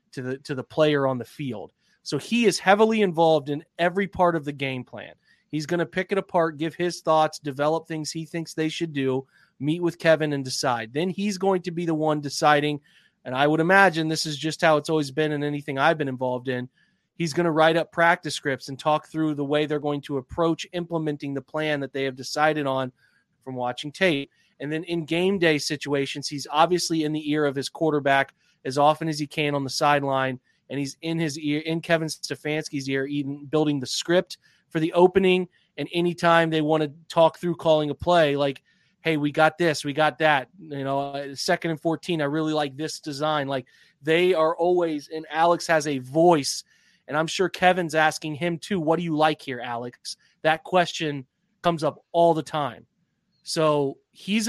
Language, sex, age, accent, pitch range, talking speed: English, male, 30-49, American, 145-170 Hz, 210 wpm